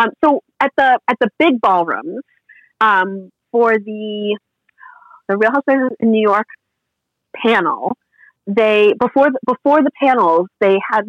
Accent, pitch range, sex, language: American, 180-245 Hz, female, English